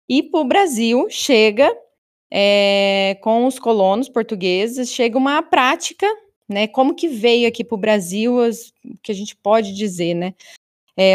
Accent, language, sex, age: Brazilian, Portuguese, female, 20-39